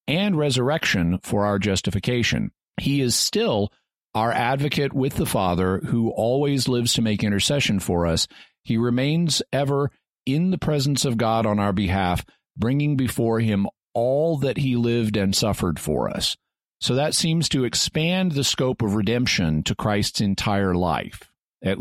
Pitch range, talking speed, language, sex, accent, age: 100-120 Hz, 155 wpm, English, male, American, 40-59